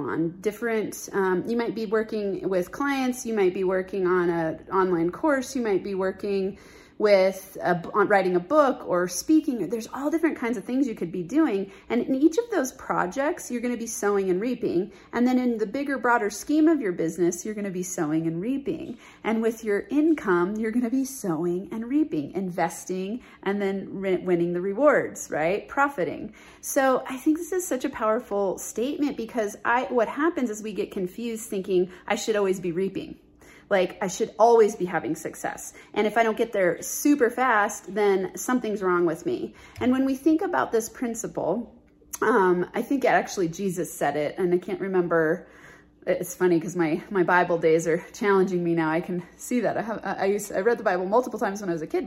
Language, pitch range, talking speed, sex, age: English, 180-245 Hz, 205 wpm, female, 30-49